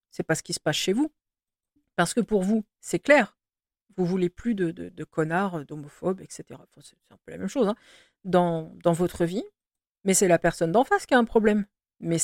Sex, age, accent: female, 50-69, French